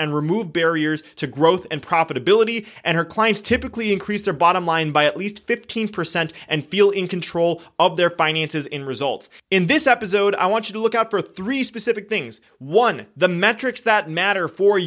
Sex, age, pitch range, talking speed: male, 30-49, 170-215 Hz, 190 wpm